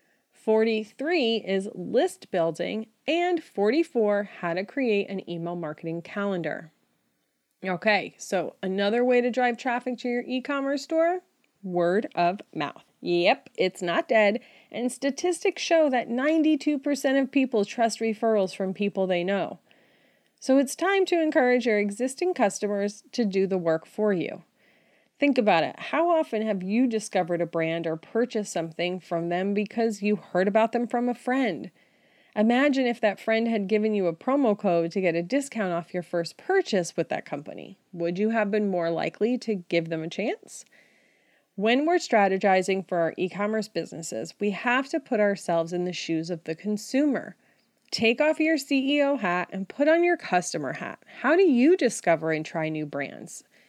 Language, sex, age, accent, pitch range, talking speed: English, female, 30-49, American, 185-260 Hz, 170 wpm